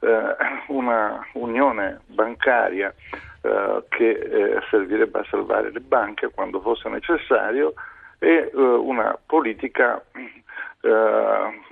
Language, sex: Italian, male